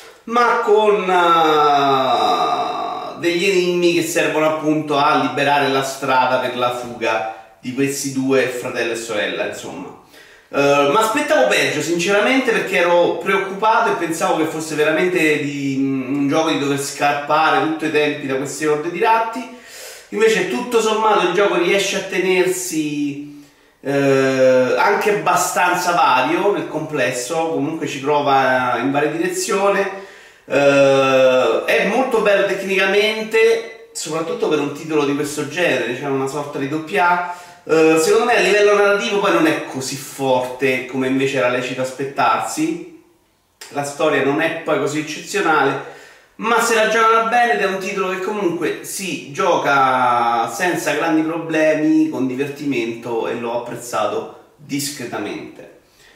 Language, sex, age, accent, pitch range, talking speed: Italian, male, 30-49, native, 140-195 Hz, 140 wpm